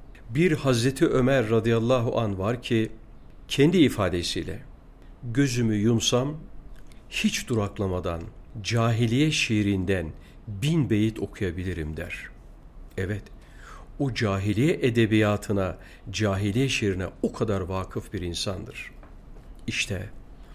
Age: 50-69